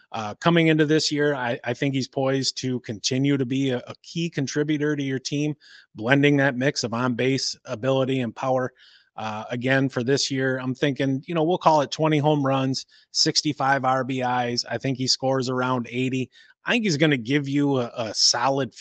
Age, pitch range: 30-49, 120-145 Hz